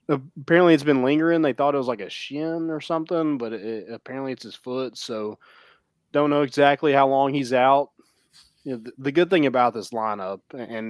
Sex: male